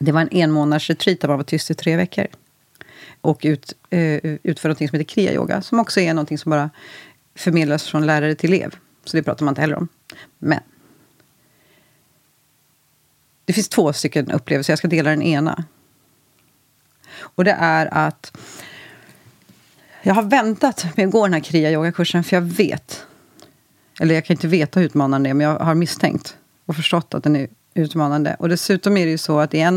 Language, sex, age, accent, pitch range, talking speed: Swedish, female, 40-59, native, 150-185 Hz, 180 wpm